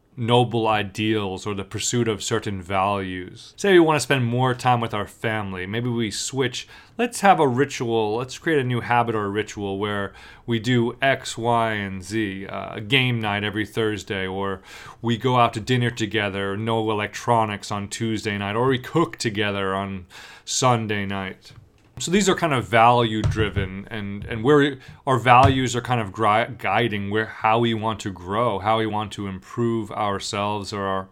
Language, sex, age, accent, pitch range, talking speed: English, male, 30-49, American, 105-125 Hz, 180 wpm